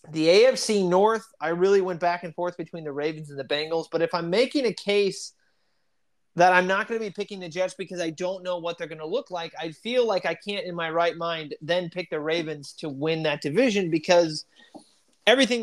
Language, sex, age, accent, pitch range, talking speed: English, male, 30-49, American, 155-185 Hz, 225 wpm